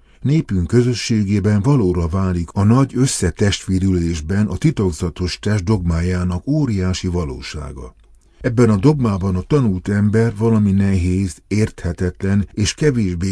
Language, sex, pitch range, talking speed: Hungarian, male, 85-110 Hz, 110 wpm